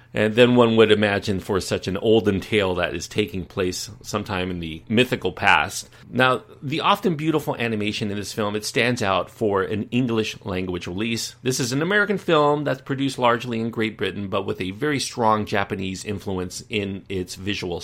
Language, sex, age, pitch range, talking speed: English, male, 40-59, 95-120 Hz, 190 wpm